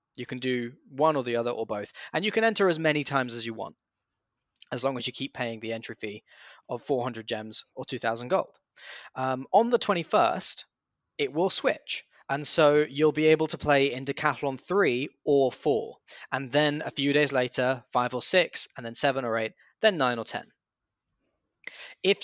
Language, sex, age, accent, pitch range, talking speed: English, male, 10-29, British, 125-160 Hz, 195 wpm